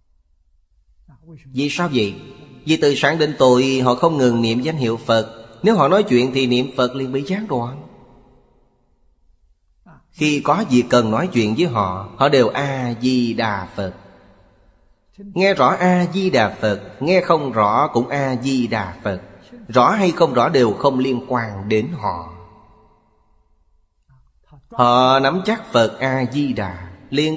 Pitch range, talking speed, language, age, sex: 105-140 Hz, 140 wpm, Vietnamese, 30-49, male